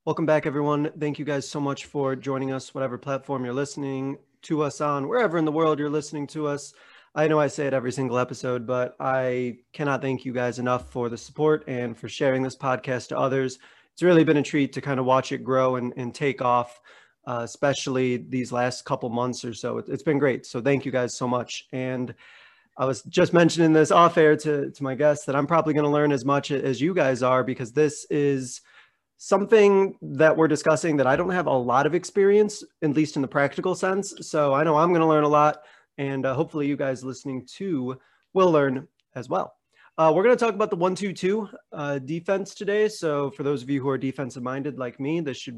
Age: 20-39